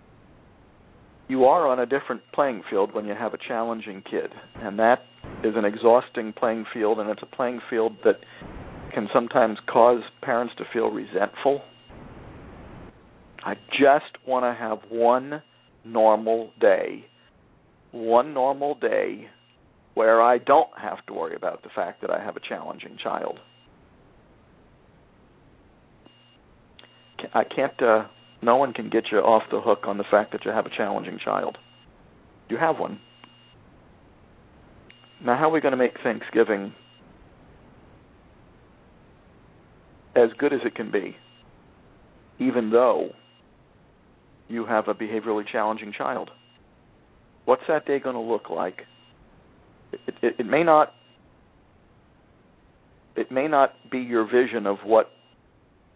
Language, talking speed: English, 135 wpm